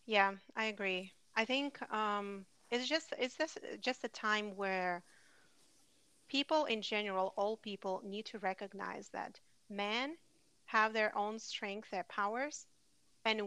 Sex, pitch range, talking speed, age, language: female, 195-225 Hz, 140 wpm, 30-49, English